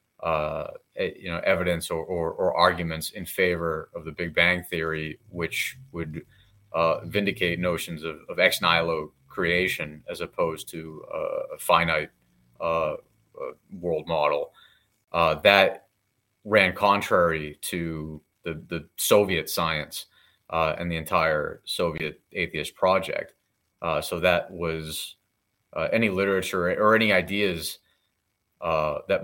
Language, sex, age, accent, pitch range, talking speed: English, male, 30-49, American, 80-105 Hz, 125 wpm